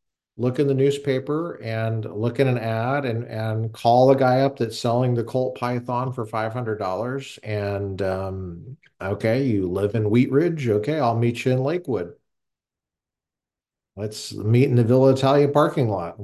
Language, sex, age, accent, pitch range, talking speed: English, male, 50-69, American, 105-130 Hz, 170 wpm